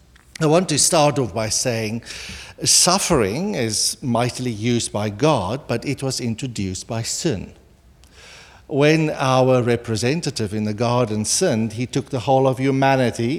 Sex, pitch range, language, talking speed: male, 110-155 Hz, English, 145 wpm